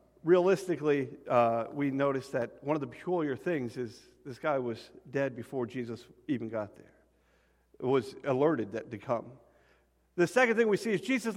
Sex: male